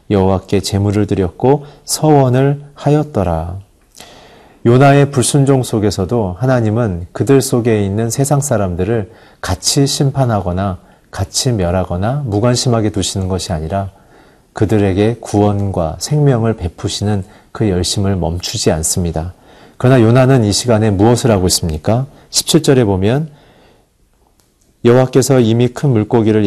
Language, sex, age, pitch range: Korean, male, 40-59, 95-130 Hz